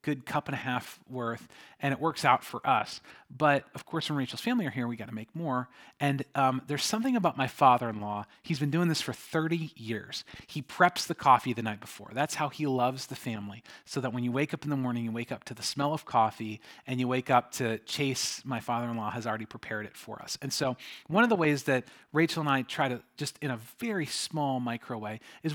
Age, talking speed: 40-59, 240 wpm